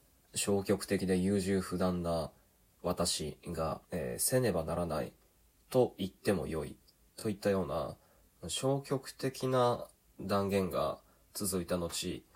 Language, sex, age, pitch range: Japanese, male, 20-39, 85-115 Hz